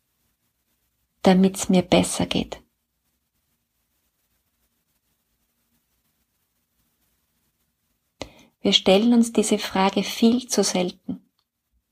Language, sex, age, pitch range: German, female, 30-49, 170-220 Hz